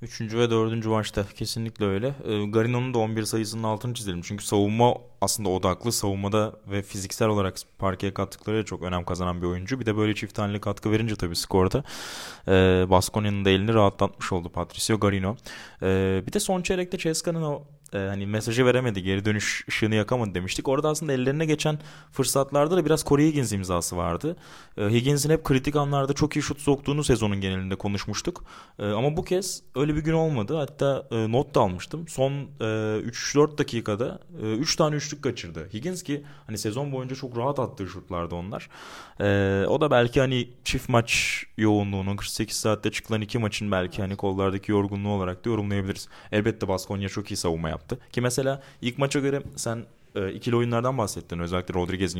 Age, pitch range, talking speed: 20-39, 100-135 Hz, 170 wpm